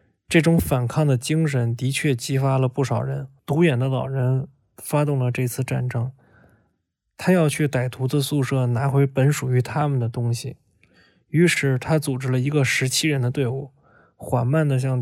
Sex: male